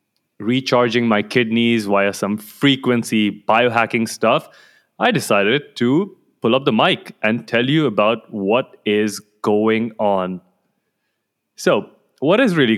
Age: 20-39